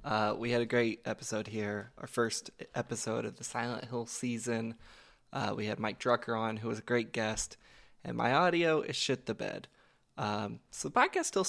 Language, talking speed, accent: English, 200 wpm, American